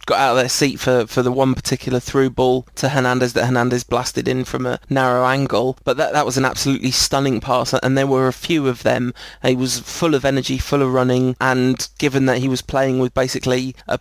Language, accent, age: English, British, 20-39